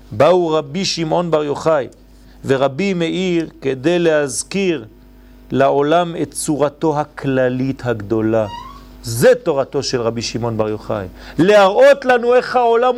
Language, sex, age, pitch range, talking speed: French, male, 40-59, 125-205 Hz, 115 wpm